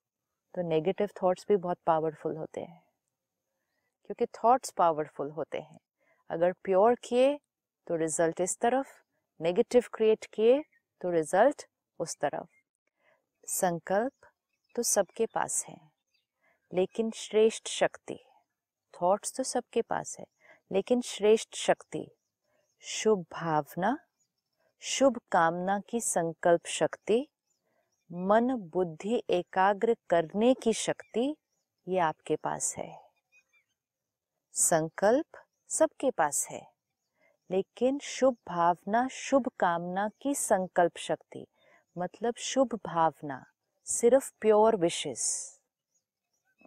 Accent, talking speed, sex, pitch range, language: native, 100 wpm, female, 175-240 Hz, Hindi